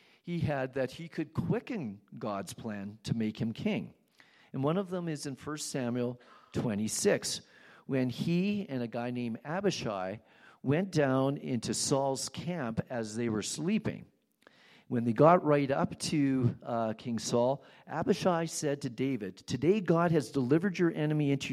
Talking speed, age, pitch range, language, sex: 160 wpm, 50-69, 115-155 Hz, English, male